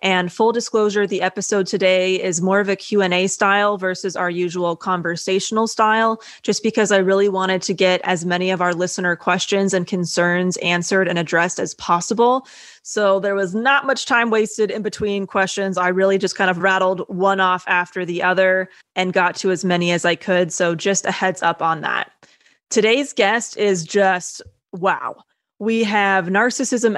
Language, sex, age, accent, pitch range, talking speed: English, female, 20-39, American, 185-205 Hz, 180 wpm